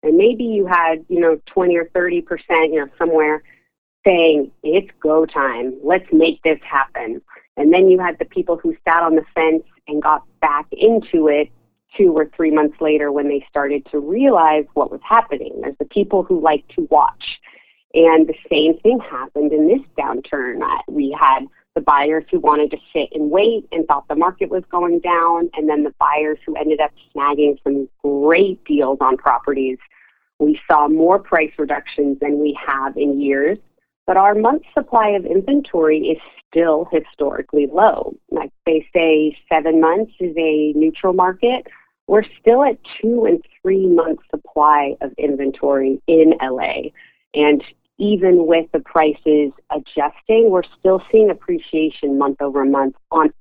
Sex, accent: female, American